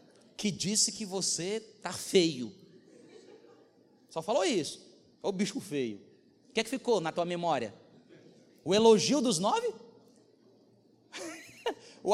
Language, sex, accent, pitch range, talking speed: Portuguese, male, Brazilian, 220-310 Hz, 130 wpm